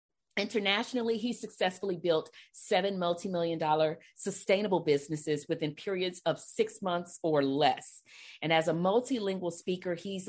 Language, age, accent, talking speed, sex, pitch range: English, 40-59, American, 130 wpm, female, 165-200 Hz